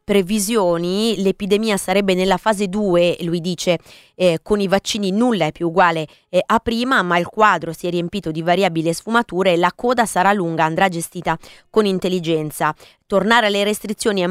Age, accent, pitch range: 20-39, native, 175-210 Hz